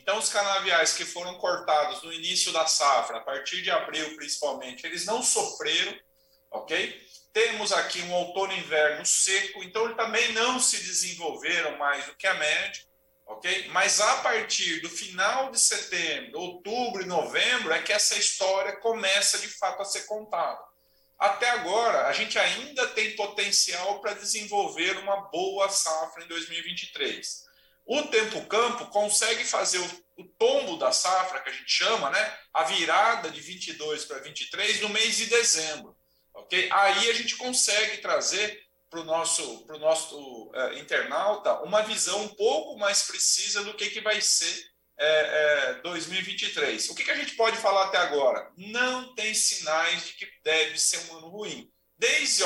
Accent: Brazilian